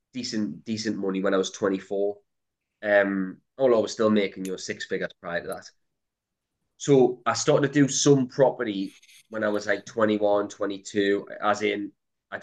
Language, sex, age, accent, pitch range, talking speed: English, male, 20-39, British, 95-110 Hz, 170 wpm